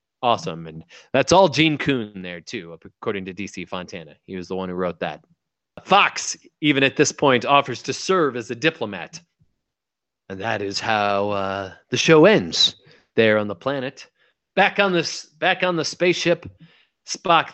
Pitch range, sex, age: 105-155 Hz, male, 30-49